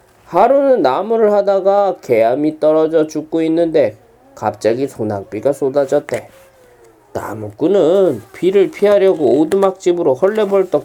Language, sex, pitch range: Korean, male, 150-205 Hz